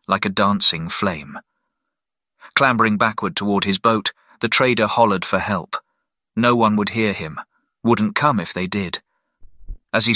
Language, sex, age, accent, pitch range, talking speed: English, male, 40-59, British, 95-110 Hz, 155 wpm